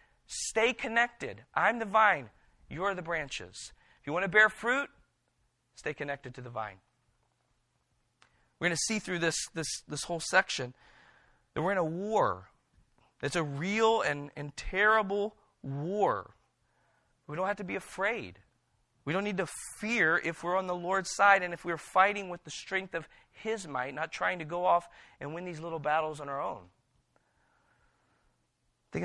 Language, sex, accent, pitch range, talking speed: English, male, American, 140-190 Hz, 170 wpm